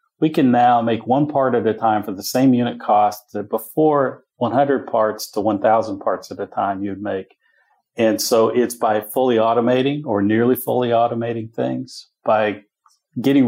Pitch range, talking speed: 110-125 Hz, 175 wpm